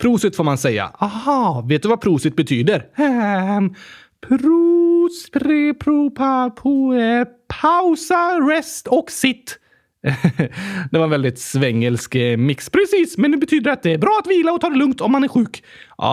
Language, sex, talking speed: Swedish, male, 175 wpm